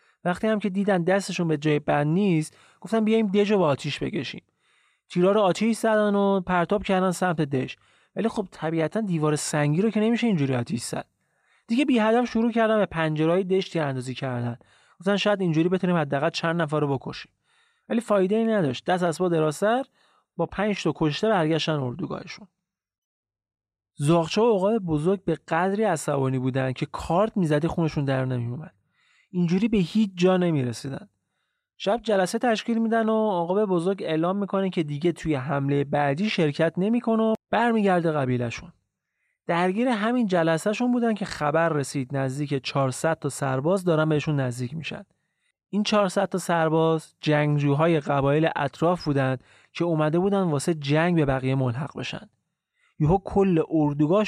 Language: Persian